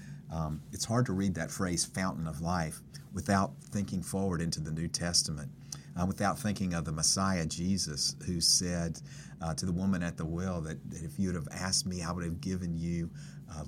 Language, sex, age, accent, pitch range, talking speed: English, male, 50-69, American, 80-95 Hz, 205 wpm